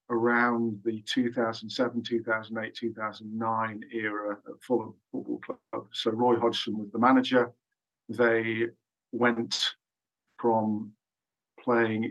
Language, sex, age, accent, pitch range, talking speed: English, male, 50-69, British, 110-120 Hz, 100 wpm